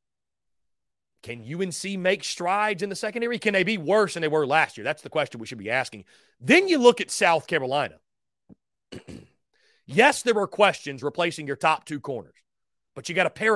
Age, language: 30-49, English